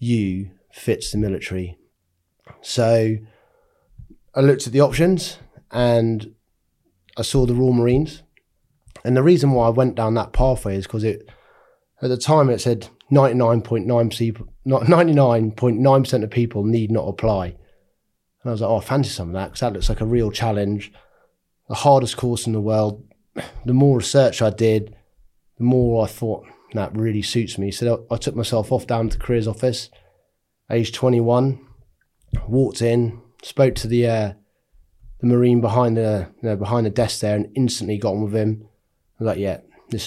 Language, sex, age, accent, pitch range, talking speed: English, male, 30-49, British, 105-125 Hz, 170 wpm